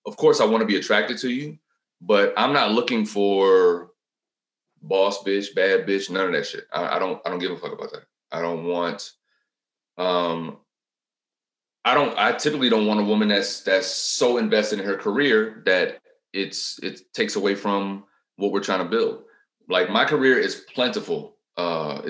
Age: 30-49